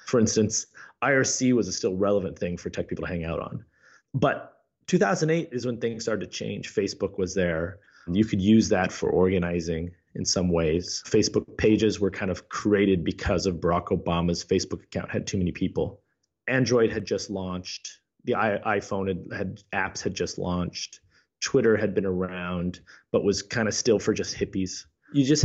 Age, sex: 30-49, male